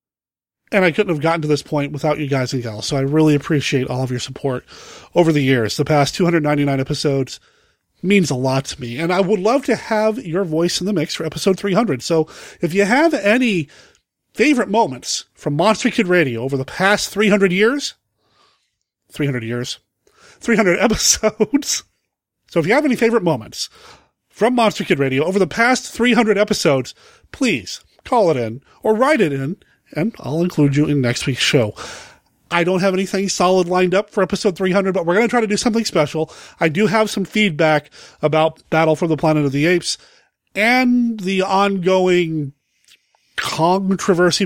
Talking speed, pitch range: 180 wpm, 150-210 Hz